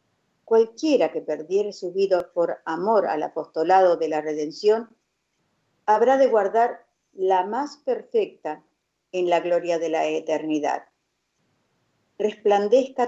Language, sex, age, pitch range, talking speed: Spanish, female, 50-69, 165-225 Hz, 115 wpm